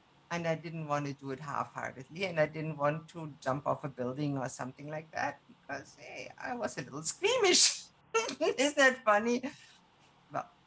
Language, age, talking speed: English, 50-69, 180 wpm